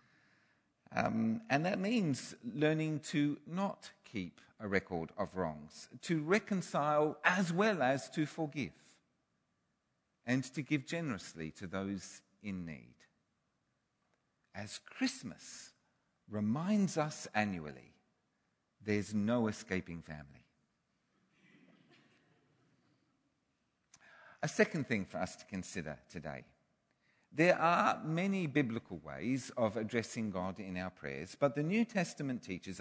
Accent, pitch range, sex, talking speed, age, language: British, 105-175 Hz, male, 110 wpm, 50-69, English